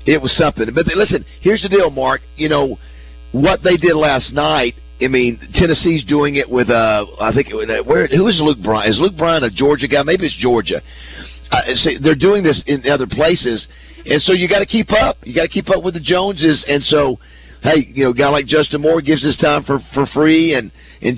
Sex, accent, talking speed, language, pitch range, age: male, American, 225 wpm, English, 120-160 Hz, 50-69